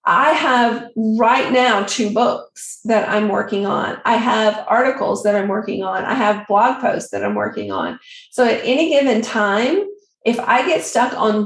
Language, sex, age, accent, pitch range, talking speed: English, female, 40-59, American, 210-250 Hz, 185 wpm